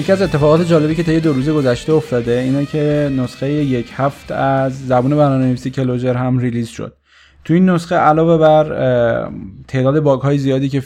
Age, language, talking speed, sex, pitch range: 20-39, Persian, 175 wpm, male, 125-150 Hz